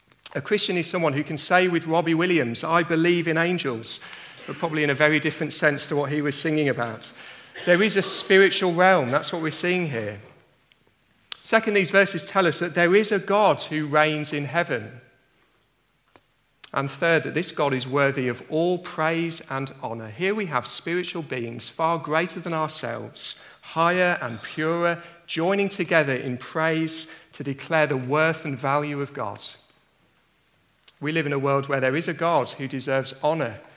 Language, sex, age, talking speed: English, male, 40-59, 180 wpm